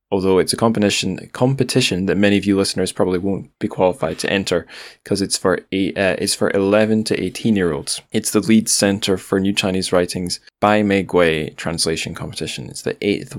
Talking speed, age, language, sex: 200 wpm, 10-29, English, male